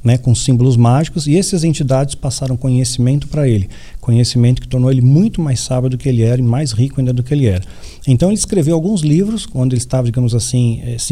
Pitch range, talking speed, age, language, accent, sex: 120-150 Hz, 220 wpm, 50-69, Portuguese, Brazilian, male